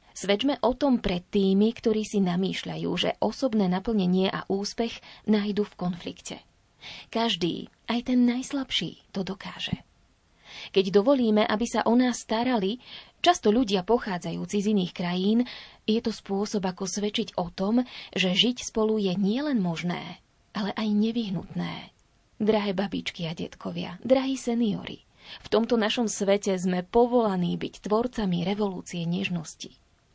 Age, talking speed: 20-39, 135 wpm